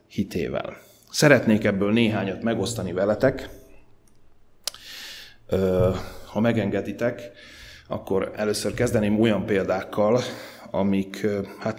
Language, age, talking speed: Hungarian, 30-49, 70 wpm